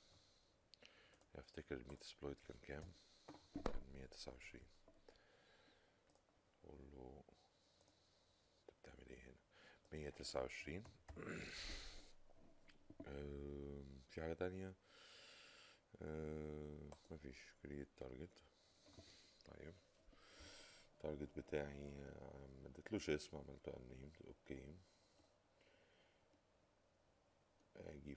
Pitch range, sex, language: 65-75 Hz, male, Arabic